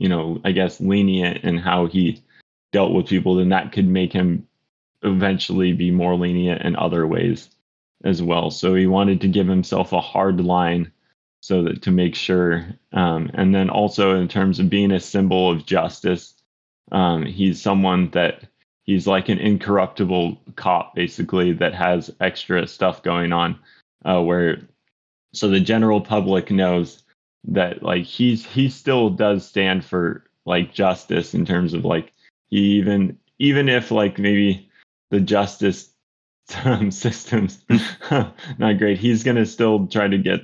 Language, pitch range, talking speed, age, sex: English, 90-100 Hz, 155 wpm, 20-39, male